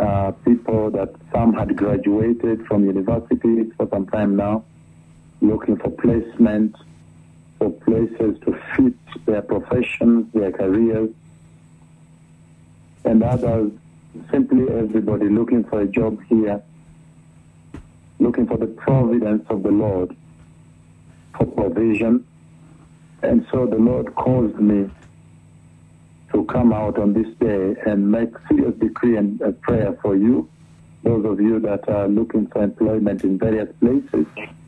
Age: 60-79